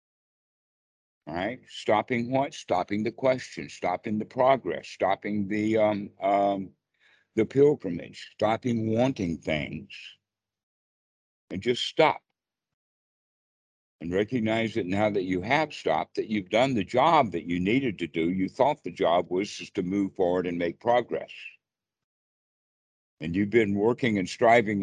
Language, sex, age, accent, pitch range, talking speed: English, male, 60-79, American, 90-110 Hz, 140 wpm